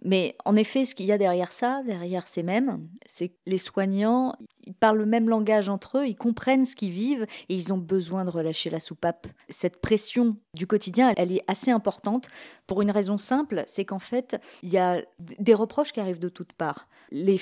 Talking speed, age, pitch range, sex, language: 215 wpm, 20-39, 185-235 Hz, female, French